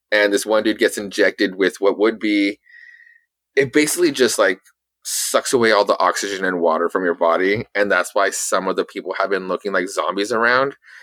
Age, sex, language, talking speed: 20-39, male, English, 200 wpm